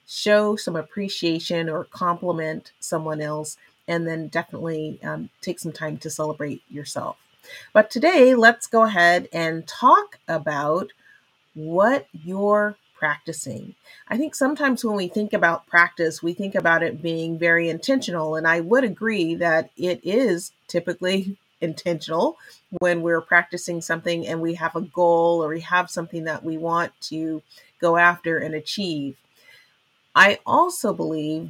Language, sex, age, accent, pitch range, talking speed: English, female, 30-49, American, 165-210 Hz, 145 wpm